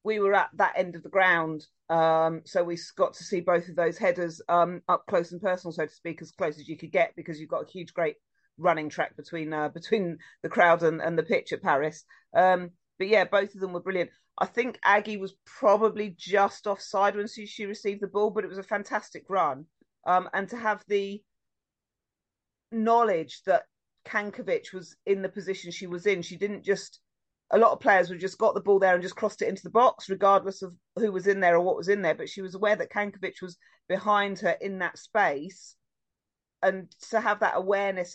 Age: 40-59